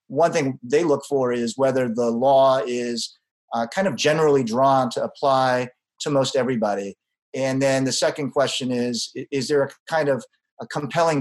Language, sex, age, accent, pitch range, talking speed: English, male, 30-49, American, 125-150 Hz, 175 wpm